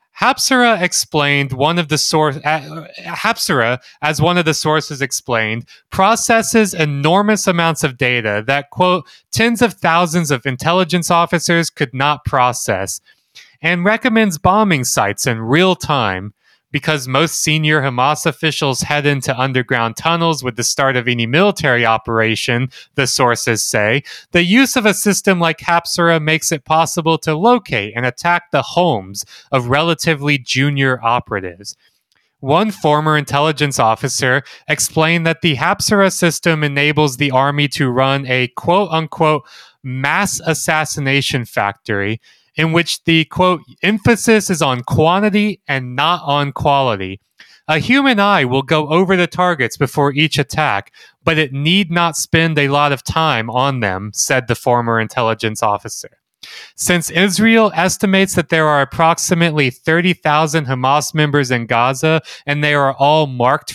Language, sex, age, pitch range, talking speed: English, male, 30-49, 130-170 Hz, 140 wpm